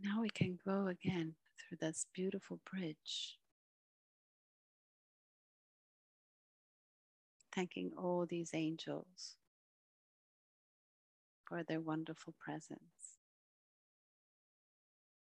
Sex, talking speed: female, 65 wpm